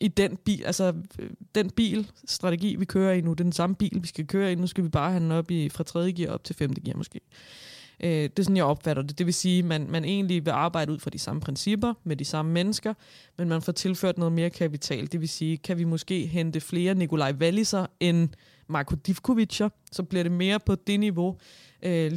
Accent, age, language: native, 20-39, Danish